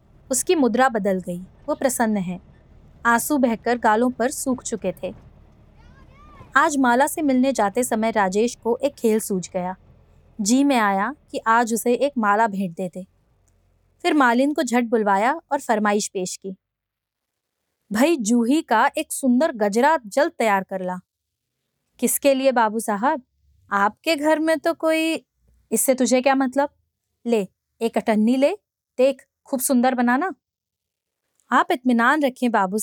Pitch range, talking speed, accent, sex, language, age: 215-280 Hz, 145 wpm, native, female, Hindi, 20-39